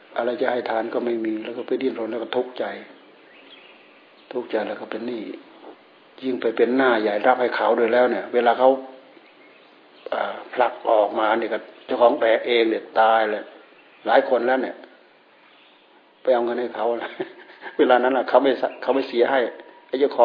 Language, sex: Thai, male